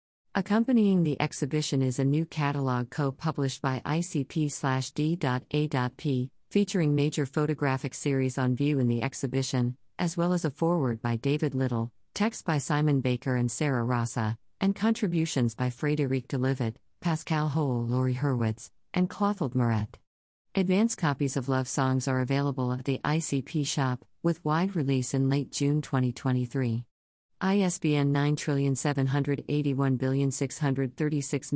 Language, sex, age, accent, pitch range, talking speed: English, female, 50-69, American, 130-155 Hz, 135 wpm